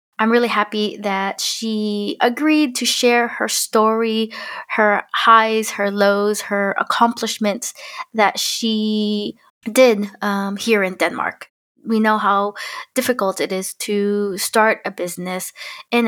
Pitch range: 195-225 Hz